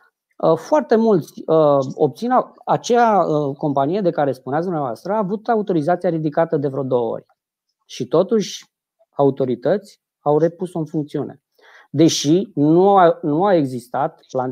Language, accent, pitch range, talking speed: Romanian, native, 145-195 Hz, 125 wpm